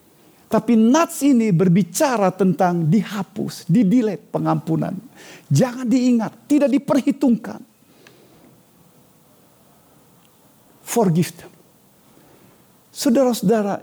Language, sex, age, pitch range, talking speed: Indonesian, male, 50-69, 160-225 Hz, 60 wpm